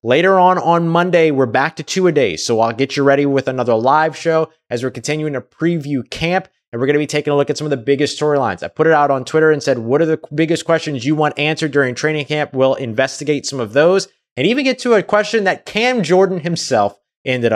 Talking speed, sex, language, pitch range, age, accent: 255 wpm, male, English, 130-170 Hz, 30-49, American